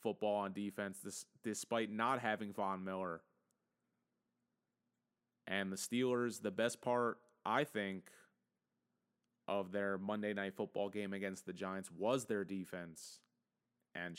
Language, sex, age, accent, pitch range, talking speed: English, male, 20-39, American, 95-120 Hz, 125 wpm